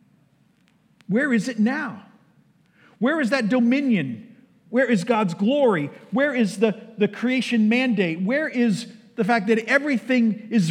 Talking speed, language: 140 wpm, English